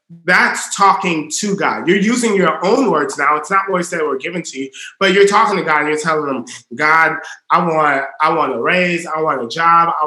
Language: English